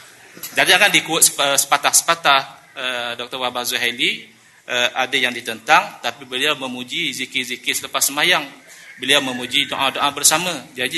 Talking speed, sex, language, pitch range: 125 wpm, male, Malay, 130-180 Hz